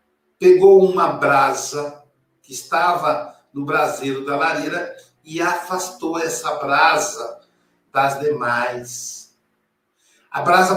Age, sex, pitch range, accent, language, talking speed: 60-79, male, 145-215 Hz, Brazilian, Portuguese, 95 wpm